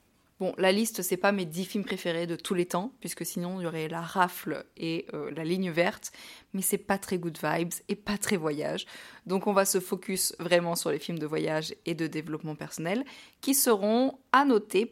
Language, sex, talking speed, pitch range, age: French, female, 215 wpm, 165-200 Hz, 20-39